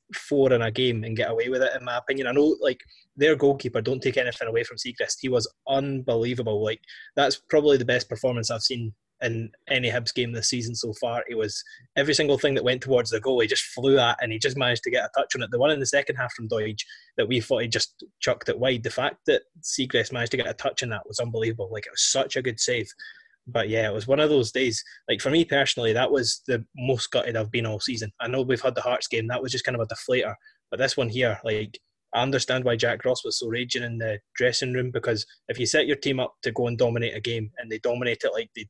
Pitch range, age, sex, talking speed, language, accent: 115-140 Hz, 20-39, male, 270 wpm, English, British